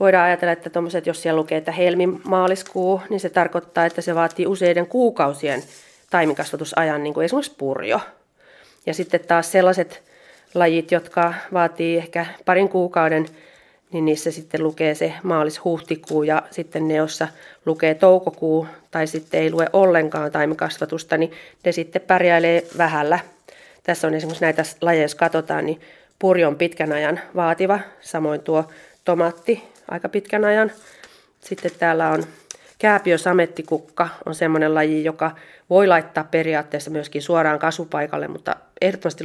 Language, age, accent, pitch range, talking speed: Finnish, 30-49, native, 155-175 Hz, 135 wpm